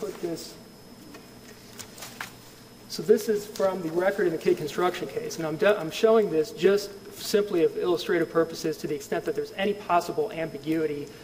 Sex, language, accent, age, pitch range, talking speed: male, English, American, 40-59, 160-220 Hz, 170 wpm